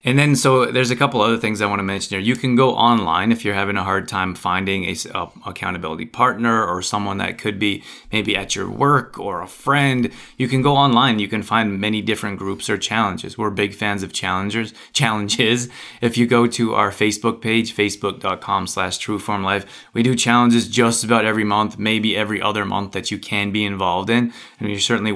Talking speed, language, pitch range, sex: 210 wpm, English, 105-120 Hz, male